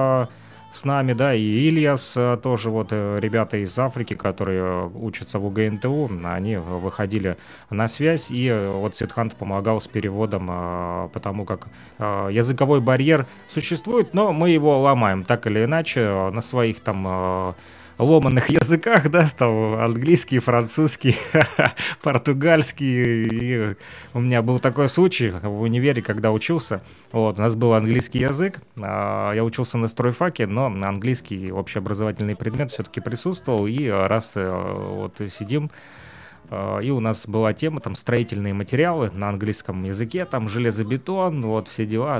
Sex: male